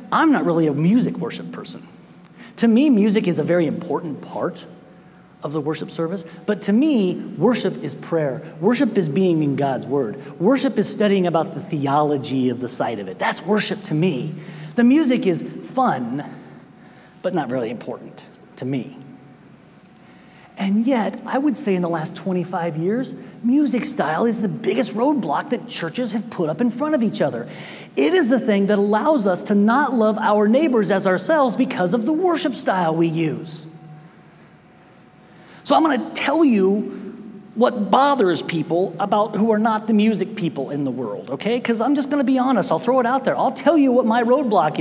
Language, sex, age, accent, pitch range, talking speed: English, male, 30-49, American, 170-250 Hz, 185 wpm